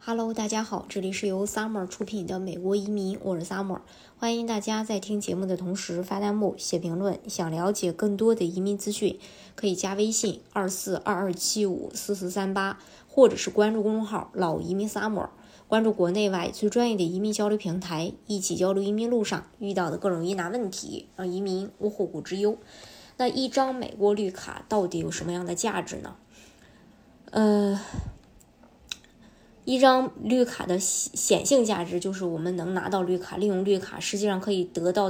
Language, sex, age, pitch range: Chinese, male, 20-39, 185-215 Hz